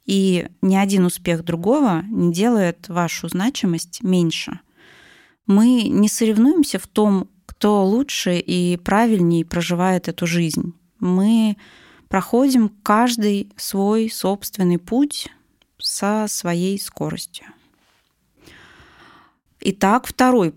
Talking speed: 95 wpm